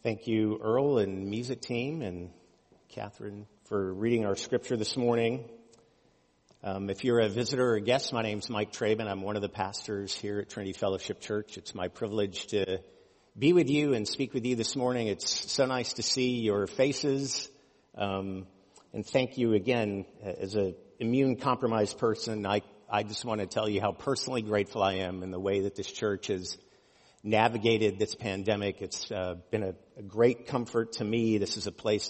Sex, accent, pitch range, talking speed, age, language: male, American, 100-125 Hz, 190 wpm, 50-69, English